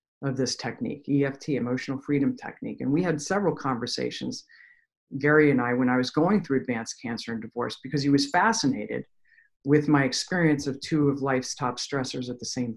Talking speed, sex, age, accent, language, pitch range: 190 wpm, female, 50-69, American, English, 135-155 Hz